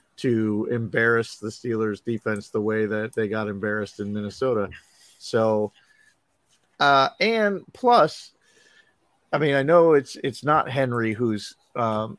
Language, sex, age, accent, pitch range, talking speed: English, male, 40-59, American, 110-135 Hz, 135 wpm